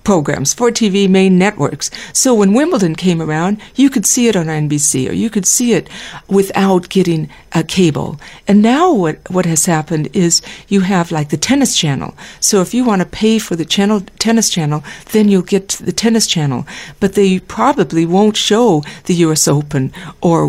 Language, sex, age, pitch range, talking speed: English, female, 60-79, 160-205 Hz, 185 wpm